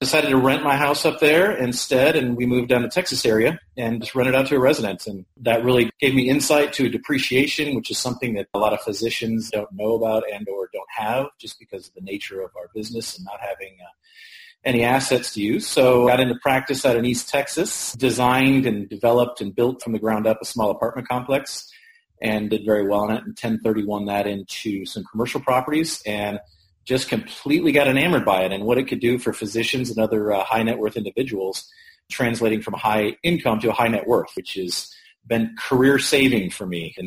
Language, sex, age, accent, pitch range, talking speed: English, male, 40-59, American, 105-135 Hz, 220 wpm